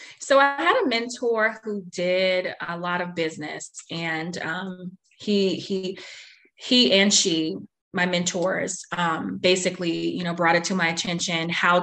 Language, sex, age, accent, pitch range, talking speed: English, female, 20-39, American, 170-195 Hz, 150 wpm